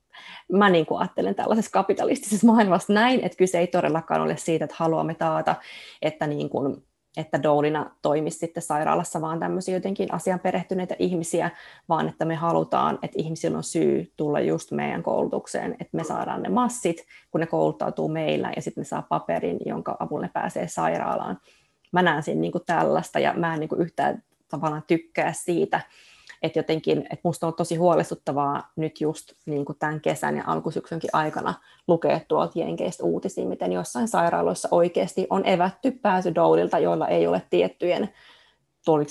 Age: 20-39